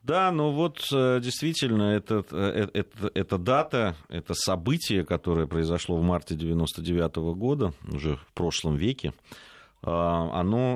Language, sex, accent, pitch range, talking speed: Russian, male, native, 80-100 Hz, 105 wpm